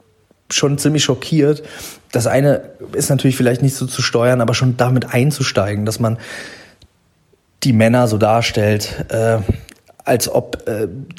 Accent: German